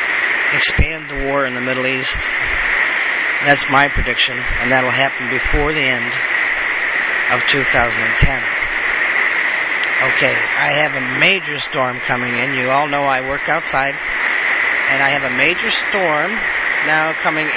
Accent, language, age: American, English, 40-59